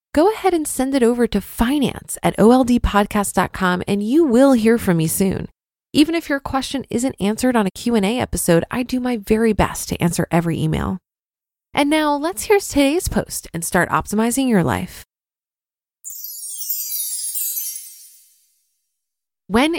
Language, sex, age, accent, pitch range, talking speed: English, female, 20-39, American, 180-245 Hz, 145 wpm